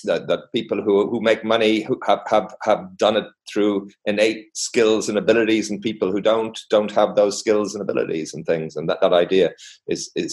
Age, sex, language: 40-59, male, English